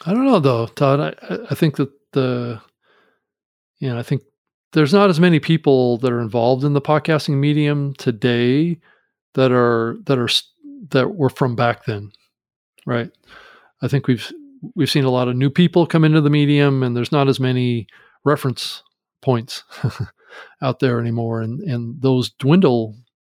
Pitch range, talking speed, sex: 120-145 Hz, 165 wpm, male